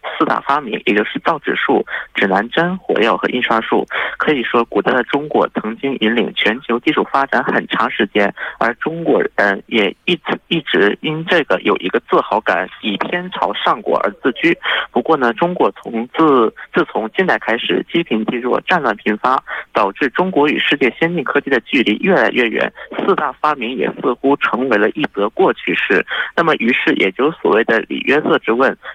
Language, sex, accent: Korean, male, Chinese